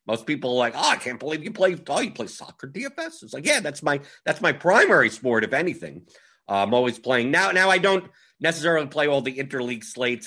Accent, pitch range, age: American, 110-165 Hz, 50-69